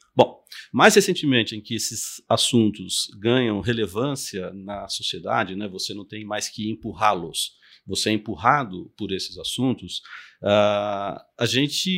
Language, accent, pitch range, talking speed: Portuguese, Brazilian, 100-130 Hz, 130 wpm